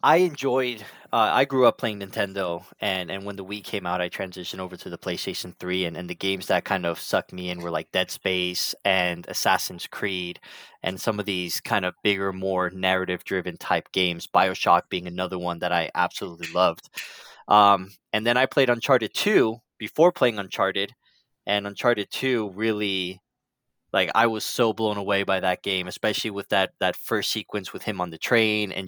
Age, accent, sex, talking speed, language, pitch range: 20-39, American, male, 195 wpm, English, 95-110 Hz